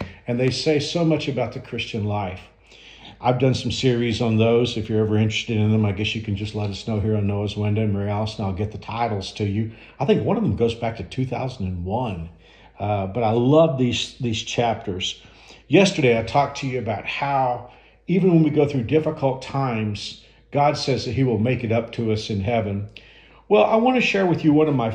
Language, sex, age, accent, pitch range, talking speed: English, male, 50-69, American, 110-145 Hz, 225 wpm